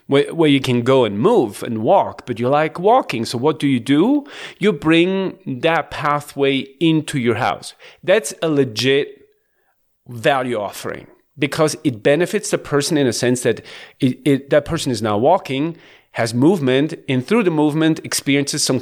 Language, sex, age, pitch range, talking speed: English, male, 40-59, 135-190 Hz, 165 wpm